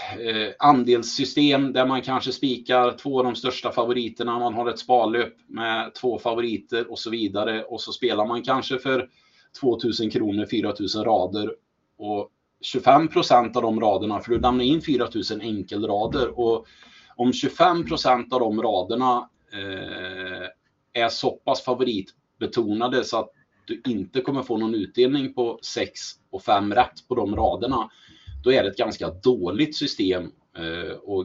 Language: Swedish